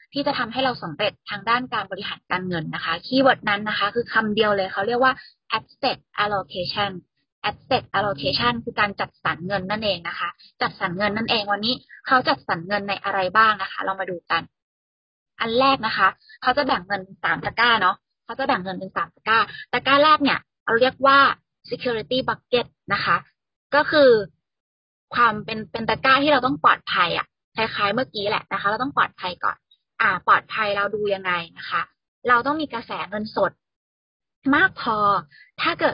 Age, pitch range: 20-39, 200-255 Hz